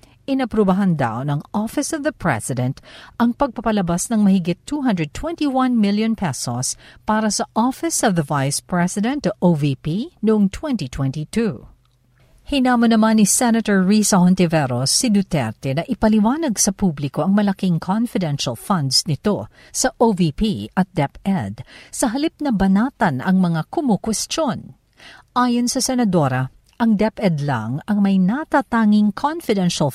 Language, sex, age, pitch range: Filipino, female, 50-69, 155-235 Hz